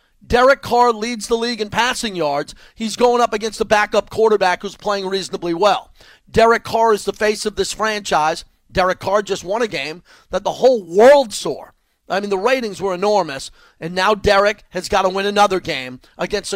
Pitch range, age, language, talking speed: 165-205 Hz, 40-59, English, 195 wpm